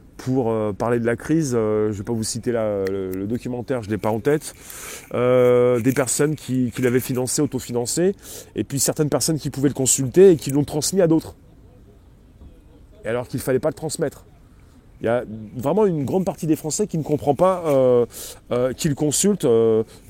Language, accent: French, French